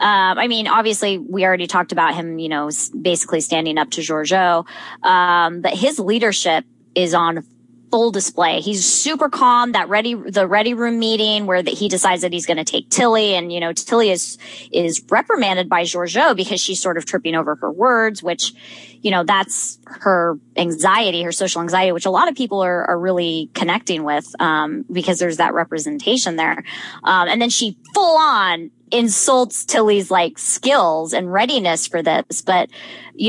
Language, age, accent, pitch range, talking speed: English, 20-39, American, 170-220 Hz, 180 wpm